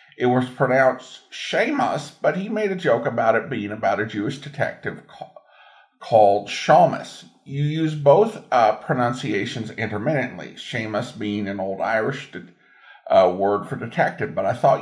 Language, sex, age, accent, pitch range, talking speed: English, male, 50-69, American, 120-160 Hz, 150 wpm